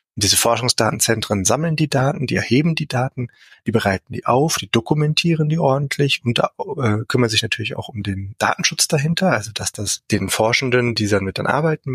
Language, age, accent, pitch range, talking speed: German, 30-49, German, 100-130 Hz, 180 wpm